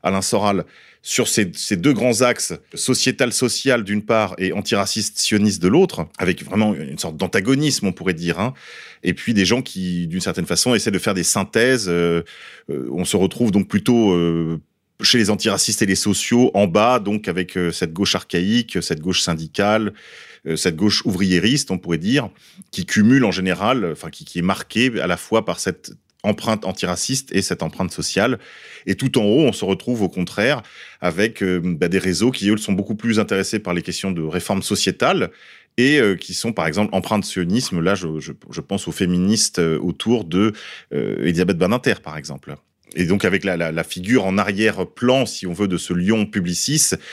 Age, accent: 30-49, French